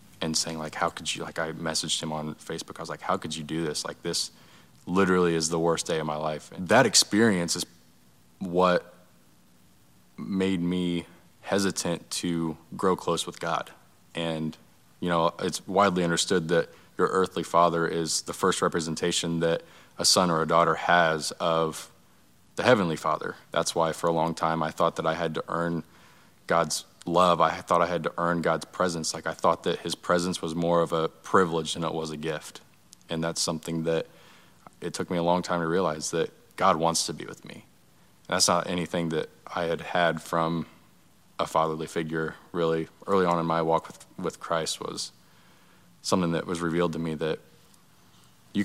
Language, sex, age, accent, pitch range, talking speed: English, male, 20-39, American, 80-85 Hz, 190 wpm